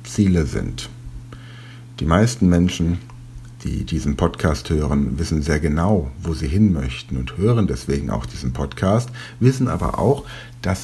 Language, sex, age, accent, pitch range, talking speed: German, male, 60-79, German, 85-120 Hz, 145 wpm